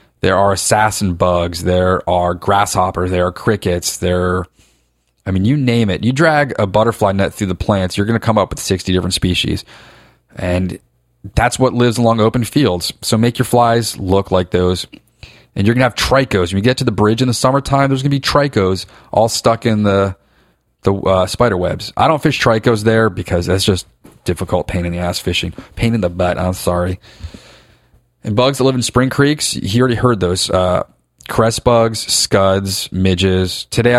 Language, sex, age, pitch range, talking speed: English, male, 30-49, 90-115 Hz, 200 wpm